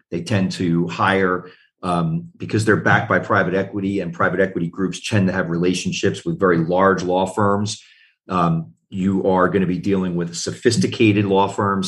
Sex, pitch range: male, 90-100 Hz